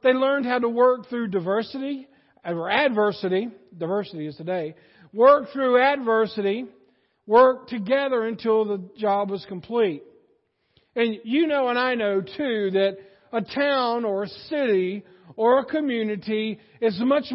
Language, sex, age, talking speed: English, male, 50-69, 140 wpm